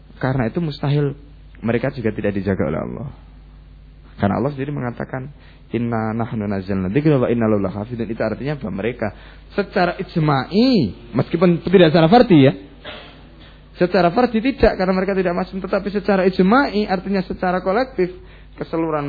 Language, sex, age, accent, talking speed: Indonesian, male, 20-39, native, 120 wpm